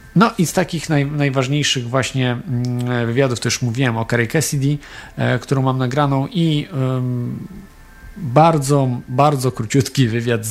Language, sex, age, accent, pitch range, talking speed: Polish, male, 40-59, native, 125-155 Hz, 135 wpm